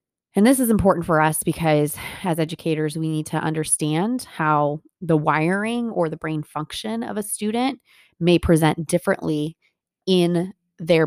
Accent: American